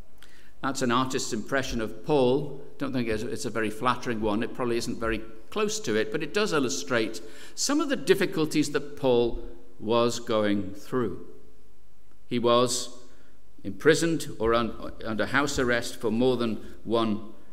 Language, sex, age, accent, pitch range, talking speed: English, male, 60-79, British, 105-140 Hz, 155 wpm